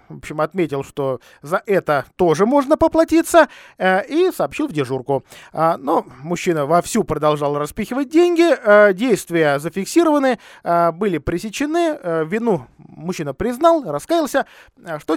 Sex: male